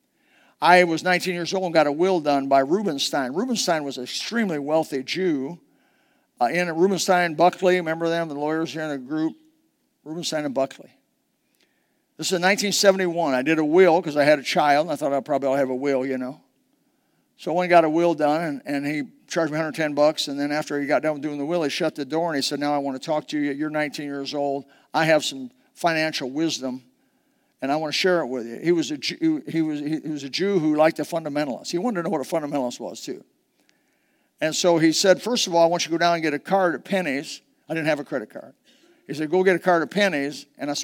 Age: 50-69